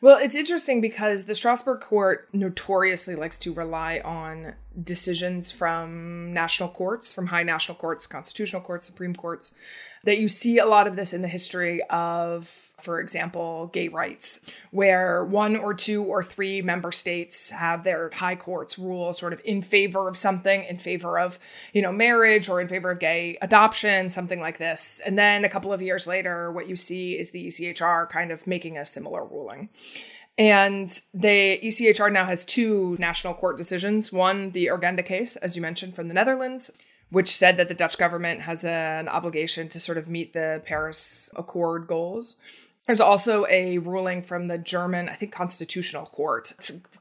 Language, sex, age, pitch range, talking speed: English, female, 20-39, 170-200 Hz, 180 wpm